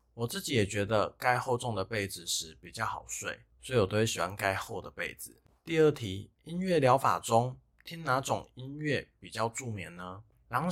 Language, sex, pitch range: Chinese, male, 100-135 Hz